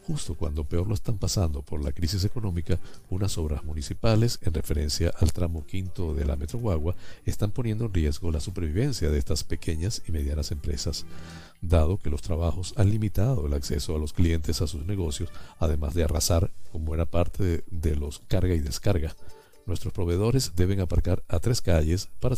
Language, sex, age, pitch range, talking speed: Spanish, male, 60-79, 80-100 Hz, 180 wpm